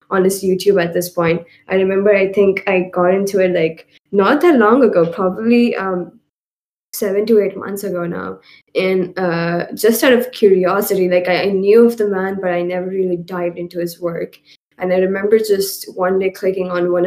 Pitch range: 180-200 Hz